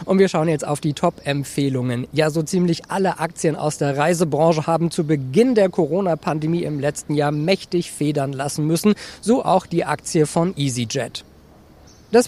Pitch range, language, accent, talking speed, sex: 140-190 Hz, German, German, 165 wpm, male